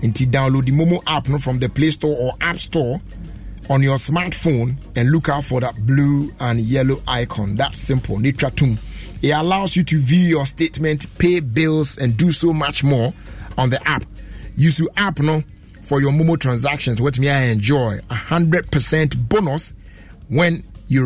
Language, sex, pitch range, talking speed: English, male, 115-155 Hz, 180 wpm